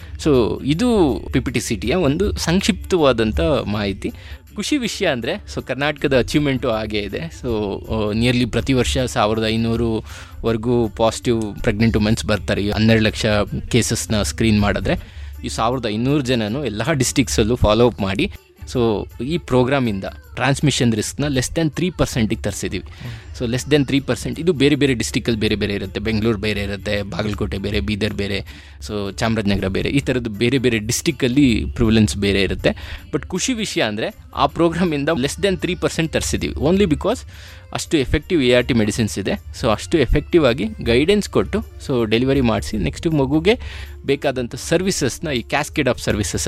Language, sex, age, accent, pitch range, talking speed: Kannada, male, 20-39, native, 100-135 Hz, 155 wpm